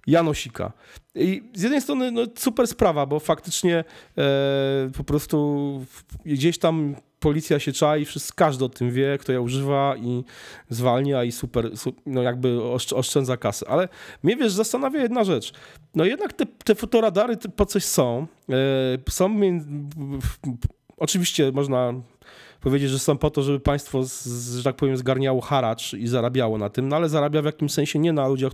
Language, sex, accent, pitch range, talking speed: Polish, male, native, 130-185 Hz, 165 wpm